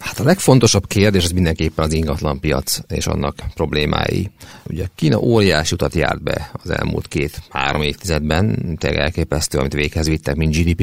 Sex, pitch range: male, 75-90 Hz